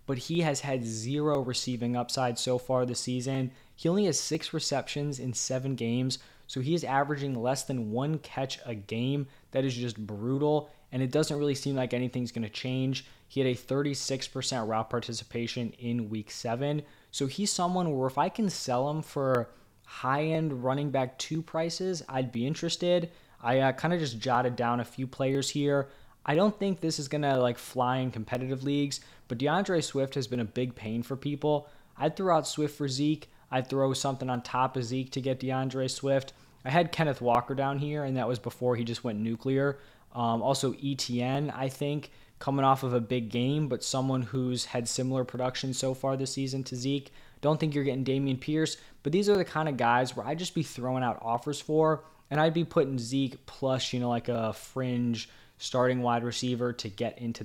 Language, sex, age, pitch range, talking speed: English, male, 20-39, 125-145 Hz, 200 wpm